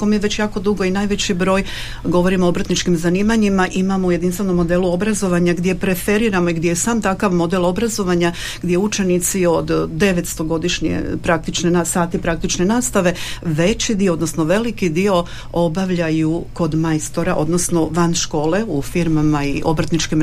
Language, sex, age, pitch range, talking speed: Croatian, female, 50-69, 170-200 Hz, 140 wpm